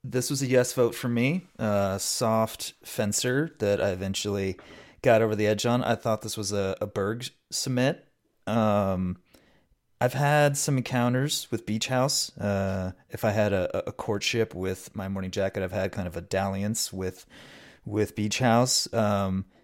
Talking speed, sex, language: 175 wpm, male, English